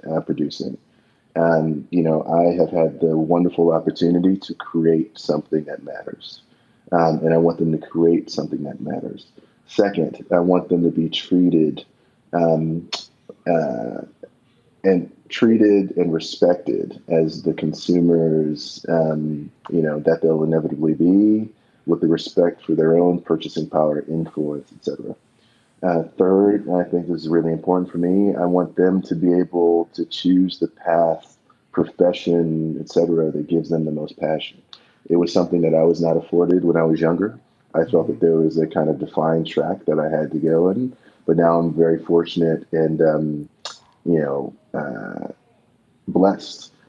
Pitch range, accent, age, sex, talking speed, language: 80-85 Hz, American, 30-49, male, 165 wpm, English